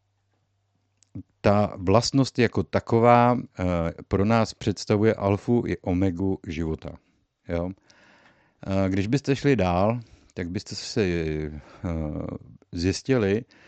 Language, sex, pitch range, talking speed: Czech, male, 85-100 Hz, 85 wpm